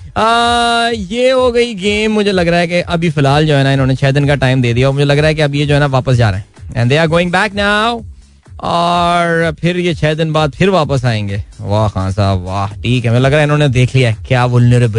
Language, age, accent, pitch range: Hindi, 20-39, native, 130-175 Hz